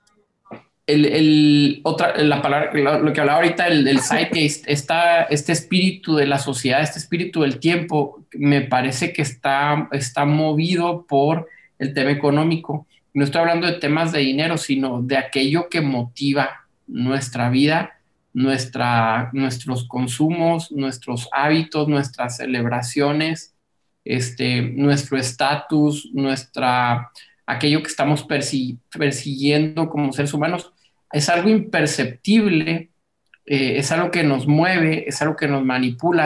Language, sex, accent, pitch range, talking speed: Spanish, male, Mexican, 135-160 Hz, 130 wpm